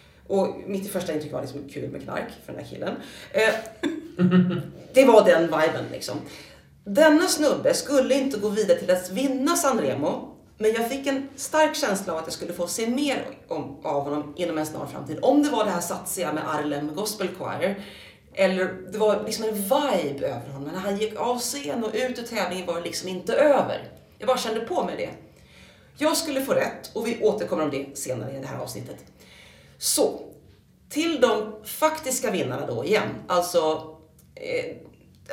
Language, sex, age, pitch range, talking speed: Swedish, female, 30-49, 165-245 Hz, 185 wpm